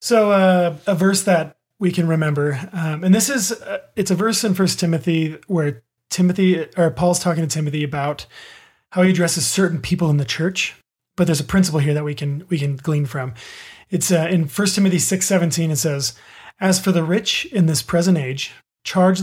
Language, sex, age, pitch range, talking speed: English, male, 30-49, 155-190 Hz, 200 wpm